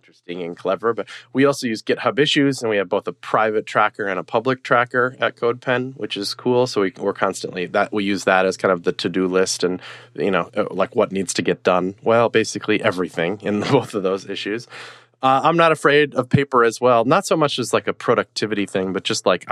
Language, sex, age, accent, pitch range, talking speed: English, male, 30-49, American, 100-140 Hz, 225 wpm